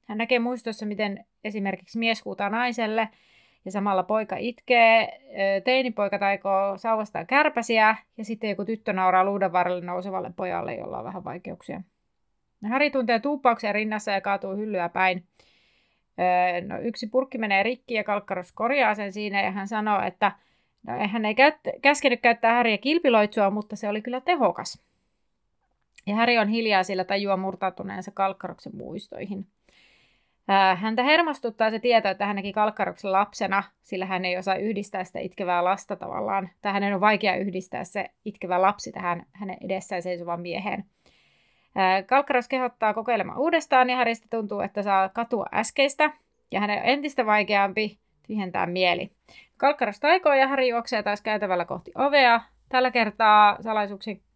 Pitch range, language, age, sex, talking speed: 195-235 Hz, Finnish, 30-49, female, 140 wpm